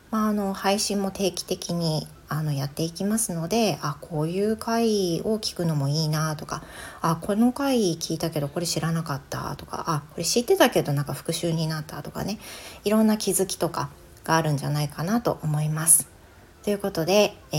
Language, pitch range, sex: Japanese, 150-205 Hz, female